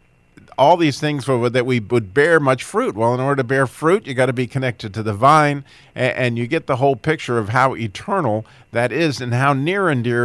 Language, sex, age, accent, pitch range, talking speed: English, male, 50-69, American, 115-140 Hz, 230 wpm